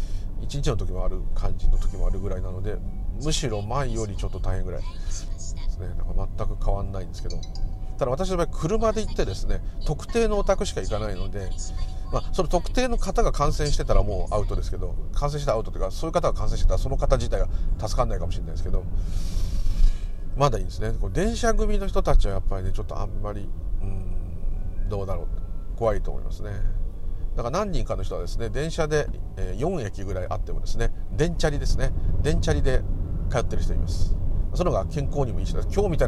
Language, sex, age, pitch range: Japanese, male, 40-59, 85-110 Hz